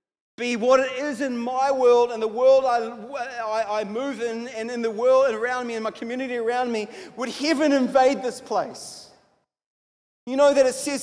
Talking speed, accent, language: 195 wpm, Australian, English